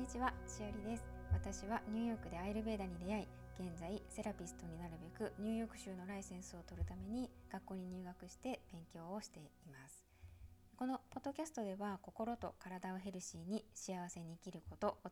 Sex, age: female, 20-39